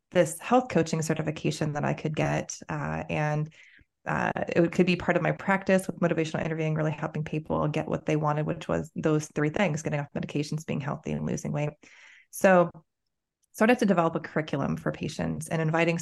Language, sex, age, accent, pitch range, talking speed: English, female, 20-39, American, 155-175 Hz, 195 wpm